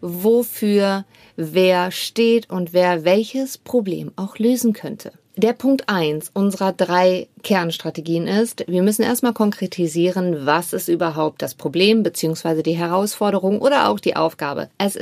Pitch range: 170-220 Hz